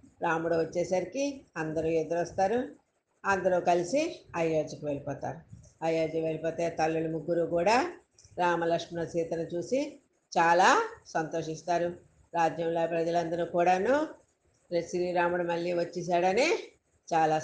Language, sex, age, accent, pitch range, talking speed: Telugu, female, 50-69, native, 160-180 Hz, 85 wpm